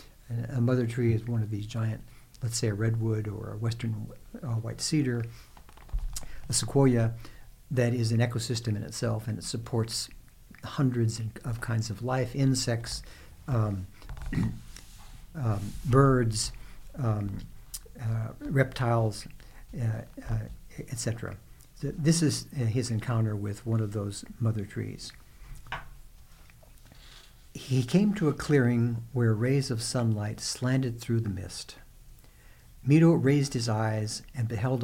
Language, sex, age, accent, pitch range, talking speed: English, male, 60-79, American, 110-130 Hz, 125 wpm